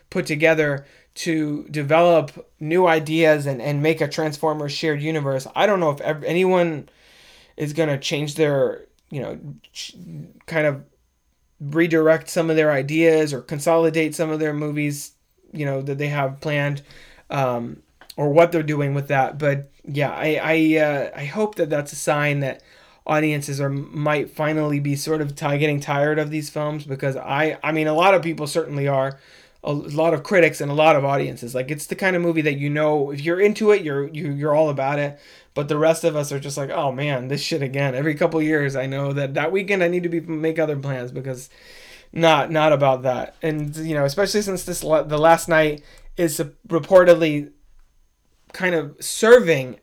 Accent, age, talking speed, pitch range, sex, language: American, 20-39, 195 wpm, 140-160 Hz, male, English